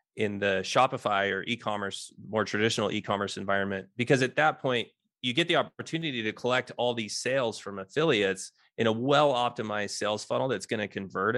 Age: 20-39